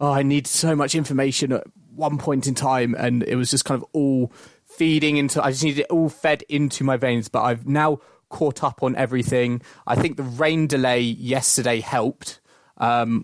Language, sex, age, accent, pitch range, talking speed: English, male, 20-39, British, 125-140 Hz, 200 wpm